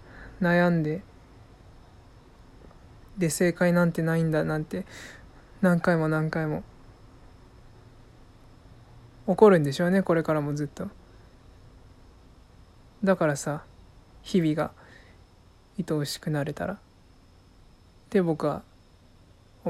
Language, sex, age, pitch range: Japanese, male, 20-39, 120-180 Hz